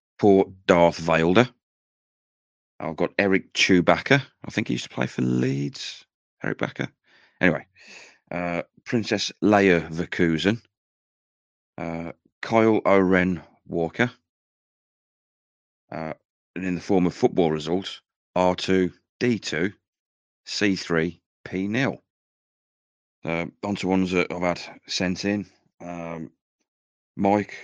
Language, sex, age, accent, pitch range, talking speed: English, male, 30-49, British, 85-100 Hz, 105 wpm